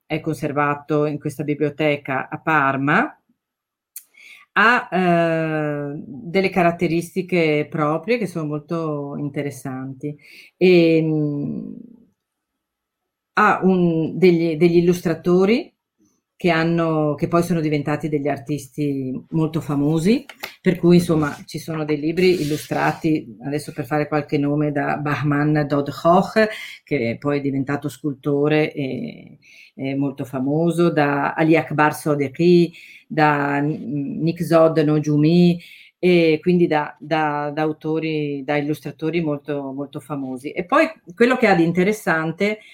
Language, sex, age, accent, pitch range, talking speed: Italian, female, 40-59, native, 150-175 Hz, 115 wpm